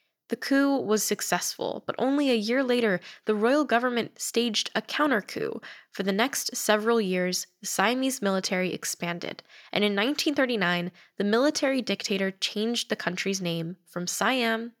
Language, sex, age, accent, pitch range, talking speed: English, female, 10-29, American, 200-255 Hz, 145 wpm